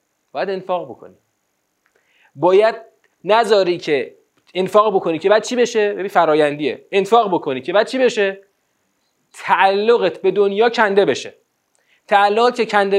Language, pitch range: Persian, 185-235 Hz